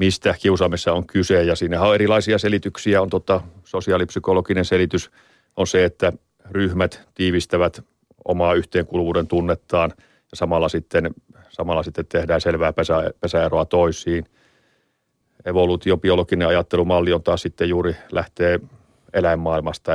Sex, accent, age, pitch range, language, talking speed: male, native, 40-59, 85-95 Hz, Finnish, 115 wpm